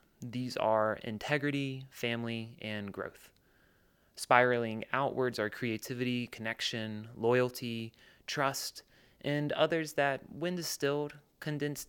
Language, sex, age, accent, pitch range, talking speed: English, male, 30-49, American, 105-130 Hz, 95 wpm